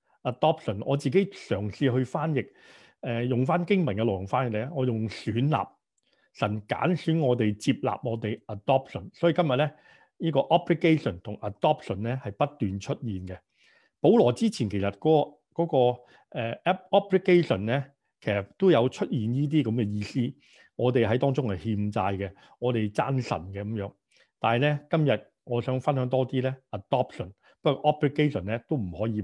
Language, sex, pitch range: Chinese, male, 105-140 Hz